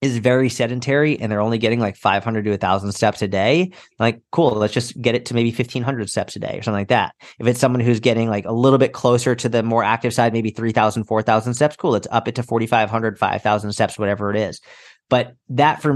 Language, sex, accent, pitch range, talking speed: English, male, American, 115-145 Hz, 245 wpm